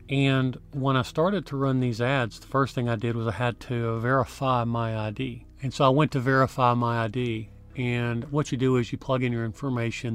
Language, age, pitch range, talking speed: English, 40-59, 115-135 Hz, 225 wpm